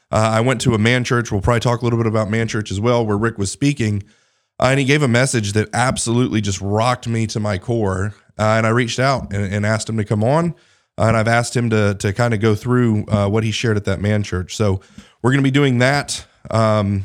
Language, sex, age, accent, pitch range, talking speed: English, male, 30-49, American, 110-125 Hz, 260 wpm